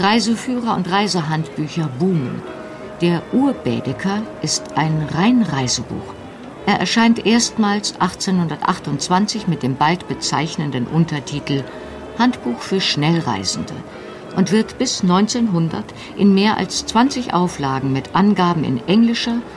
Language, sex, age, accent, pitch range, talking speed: German, female, 50-69, German, 140-200 Hz, 105 wpm